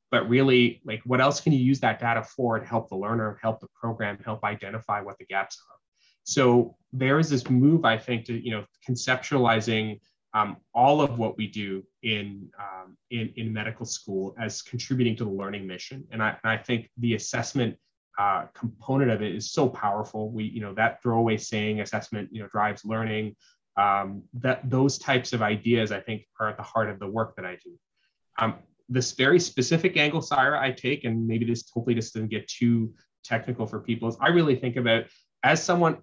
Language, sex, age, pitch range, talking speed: English, male, 20-39, 110-130 Hz, 205 wpm